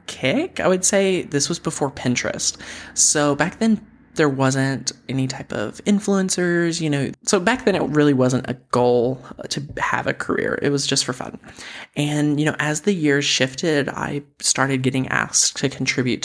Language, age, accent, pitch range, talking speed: English, 20-39, American, 130-150 Hz, 180 wpm